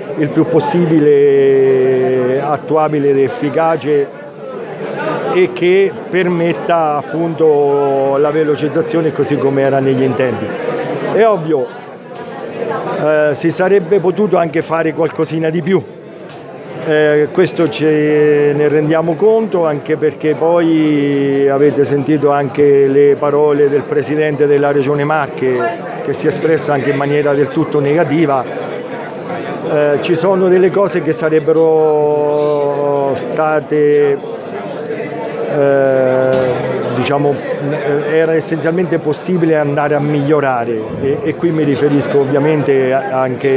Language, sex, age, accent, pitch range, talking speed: English, male, 50-69, Italian, 140-165 Hz, 110 wpm